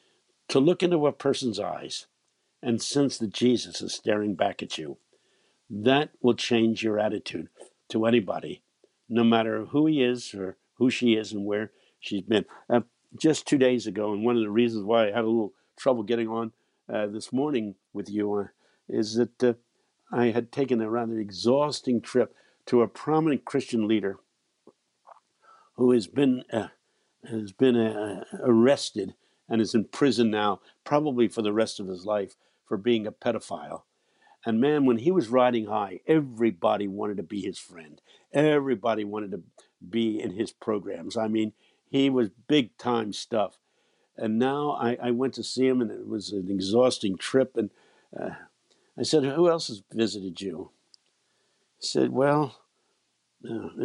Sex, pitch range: male, 110-130 Hz